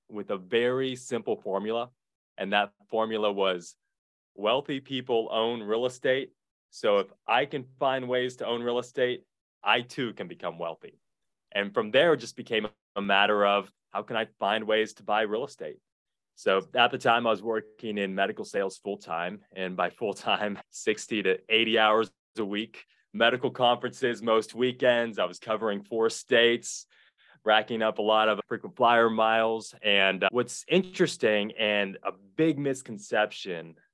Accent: American